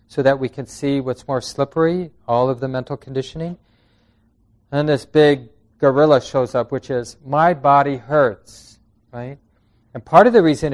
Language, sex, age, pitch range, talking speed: English, male, 40-59, 115-140 Hz, 170 wpm